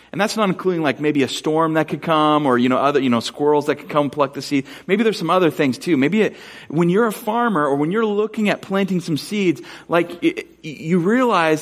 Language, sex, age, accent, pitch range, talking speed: English, male, 40-59, American, 140-185 Hz, 250 wpm